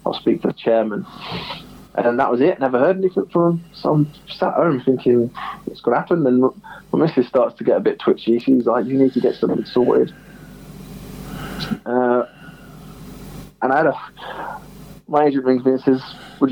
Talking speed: 190 wpm